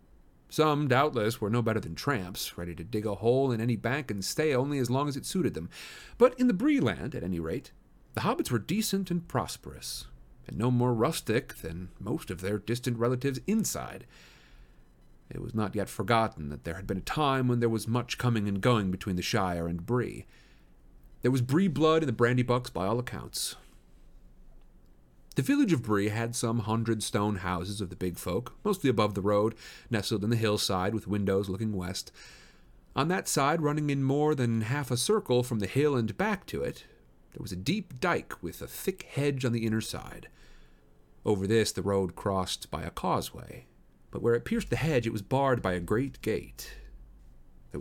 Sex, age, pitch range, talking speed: male, 40-59, 95-130 Hz, 200 wpm